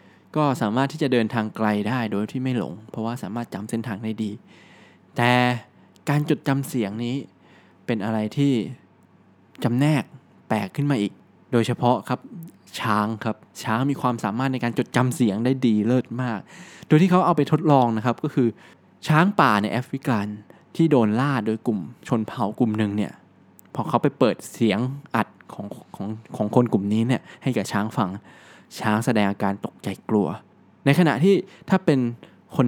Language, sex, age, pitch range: Thai, male, 20-39, 110-140 Hz